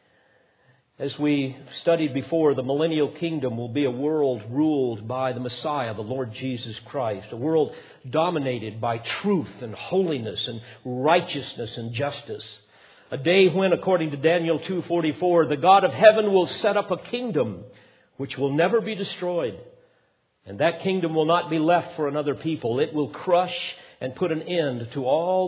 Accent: American